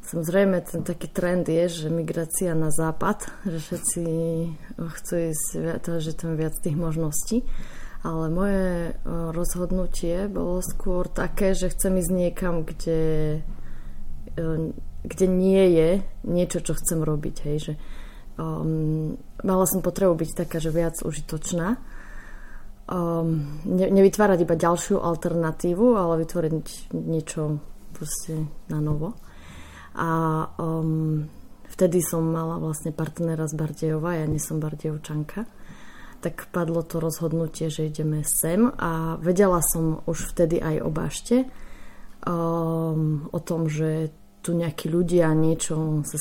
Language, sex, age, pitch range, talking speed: Slovak, female, 20-39, 160-180 Hz, 125 wpm